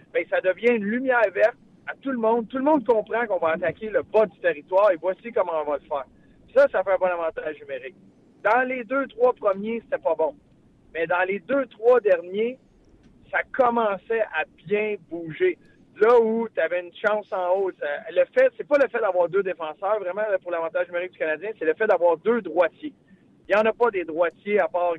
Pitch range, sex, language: 175-235 Hz, male, French